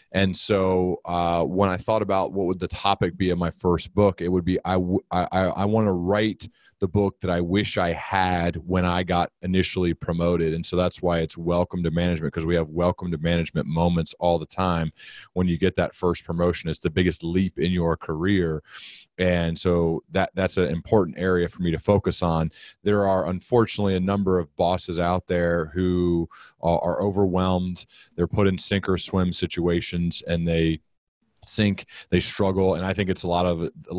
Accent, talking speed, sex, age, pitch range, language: American, 200 wpm, male, 30-49, 85-95 Hz, English